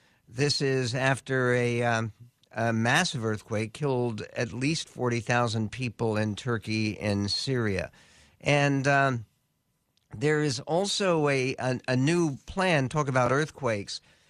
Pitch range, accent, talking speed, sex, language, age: 115-140 Hz, American, 125 wpm, male, English, 50-69